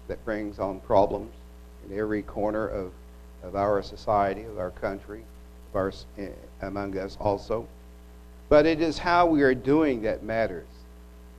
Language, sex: English, male